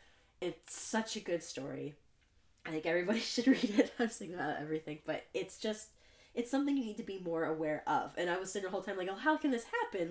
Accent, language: American, English